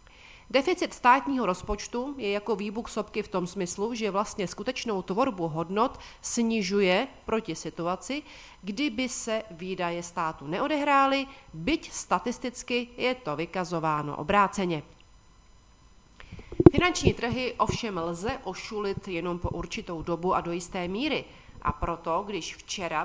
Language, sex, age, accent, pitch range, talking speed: Czech, female, 40-59, native, 170-230 Hz, 120 wpm